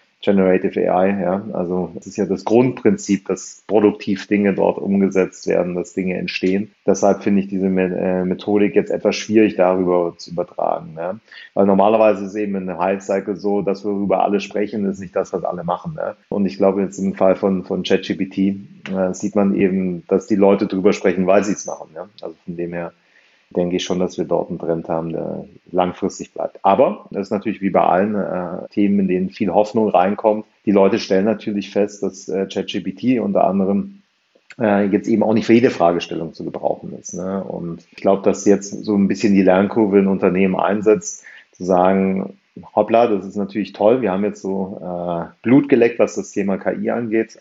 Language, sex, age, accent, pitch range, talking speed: German, male, 40-59, German, 90-100 Hz, 200 wpm